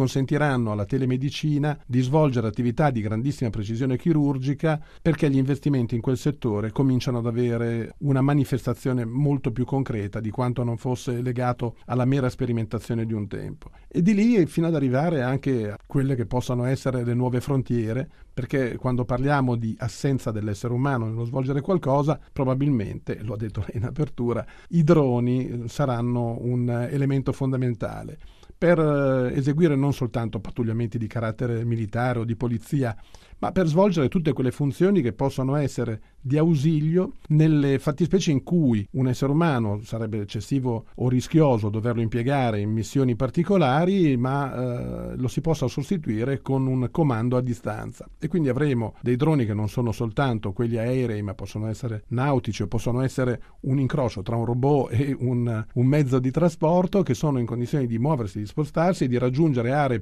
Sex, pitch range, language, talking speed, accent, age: male, 120-145 Hz, Italian, 165 wpm, native, 40-59